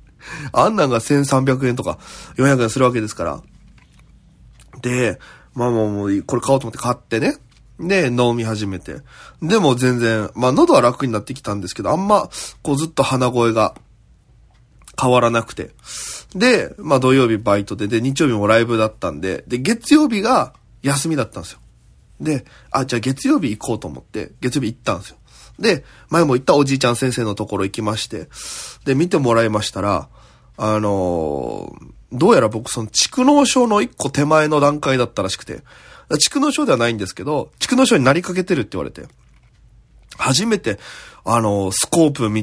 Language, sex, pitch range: Japanese, male, 110-150 Hz